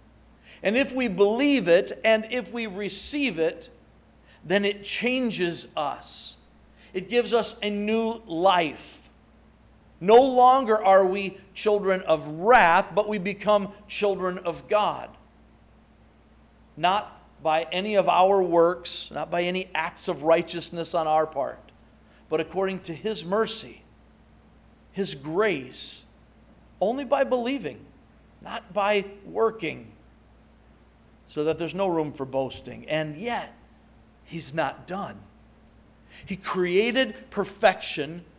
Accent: American